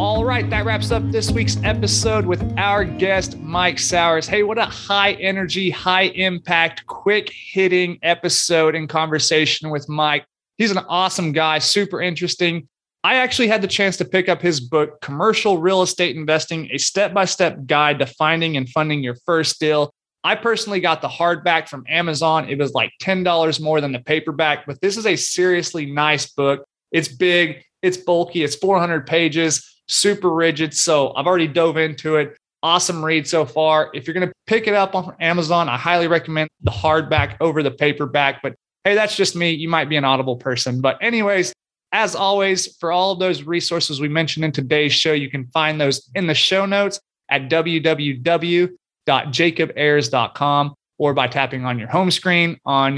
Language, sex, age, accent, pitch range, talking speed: English, male, 30-49, American, 145-180 Hz, 175 wpm